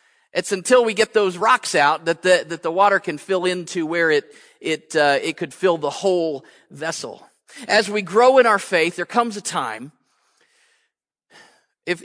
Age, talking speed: 40-59, 180 wpm